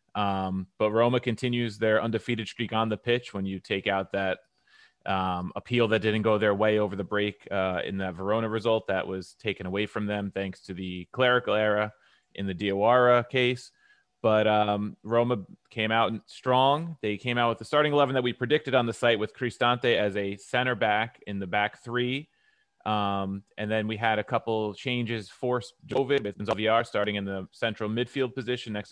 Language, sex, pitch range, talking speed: English, male, 100-120 Hz, 190 wpm